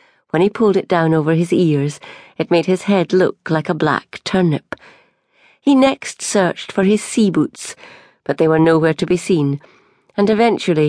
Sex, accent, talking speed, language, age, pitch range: female, British, 180 wpm, English, 40-59, 155-210 Hz